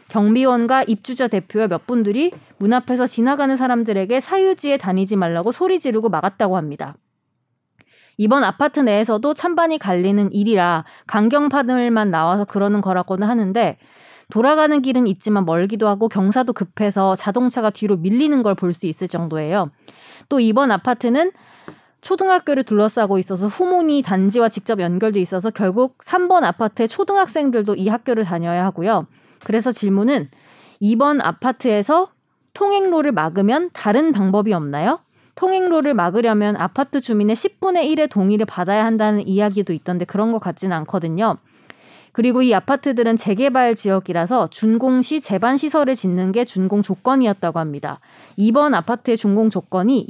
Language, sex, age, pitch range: Korean, female, 20-39, 195-265 Hz